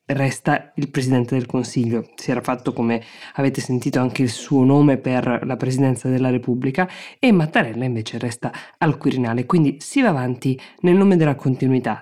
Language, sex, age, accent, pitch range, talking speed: Italian, female, 20-39, native, 130-165 Hz, 170 wpm